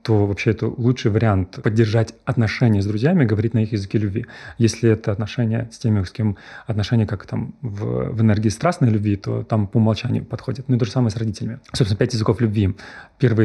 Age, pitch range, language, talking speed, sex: 30-49, 105-125 Hz, Russian, 205 wpm, male